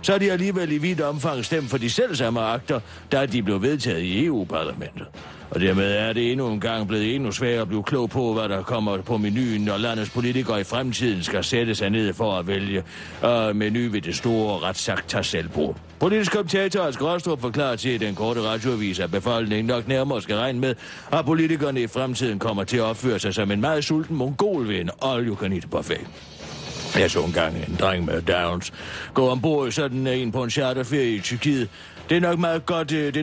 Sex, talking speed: male, 210 wpm